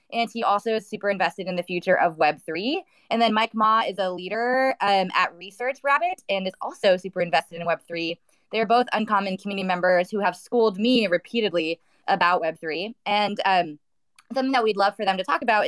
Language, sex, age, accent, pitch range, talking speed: English, female, 20-39, American, 175-225 Hz, 200 wpm